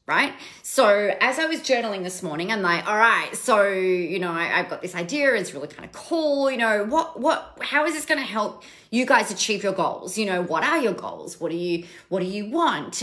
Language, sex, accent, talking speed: English, female, Australian, 240 wpm